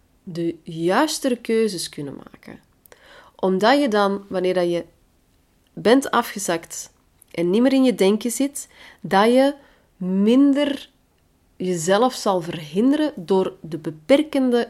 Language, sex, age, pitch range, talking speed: Dutch, female, 30-49, 170-210 Hz, 120 wpm